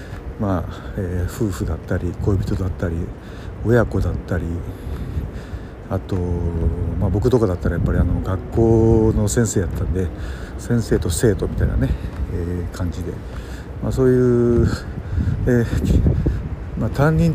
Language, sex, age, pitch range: Japanese, male, 60-79, 90-115 Hz